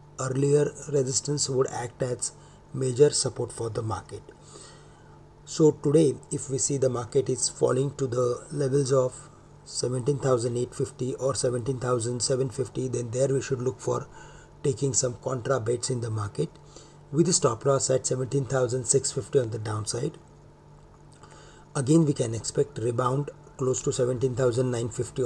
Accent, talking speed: Indian, 135 wpm